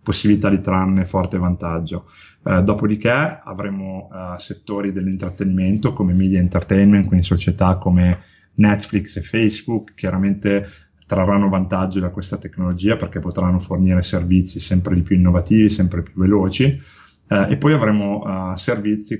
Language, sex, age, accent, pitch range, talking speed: Italian, male, 30-49, native, 90-105 Hz, 135 wpm